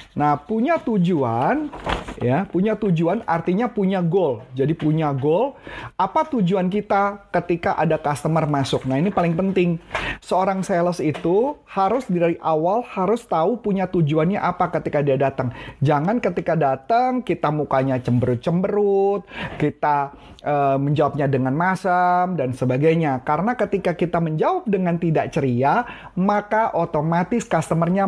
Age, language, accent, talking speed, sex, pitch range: 30-49, Indonesian, native, 130 wpm, male, 145-200 Hz